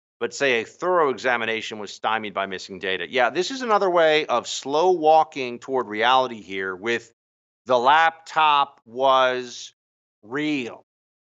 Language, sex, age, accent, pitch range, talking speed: English, male, 50-69, American, 95-155 Hz, 140 wpm